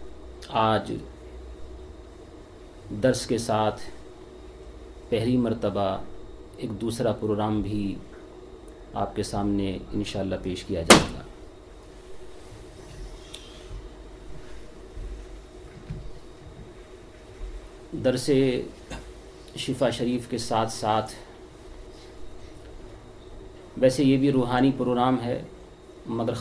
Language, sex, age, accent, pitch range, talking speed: English, male, 40-59, Indian, 105-115 Hz, 70 wpm